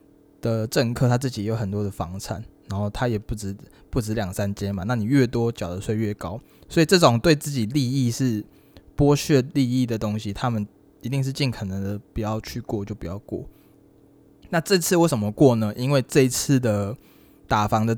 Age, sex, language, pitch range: 20-39, male, Chinese, 105-145 Hz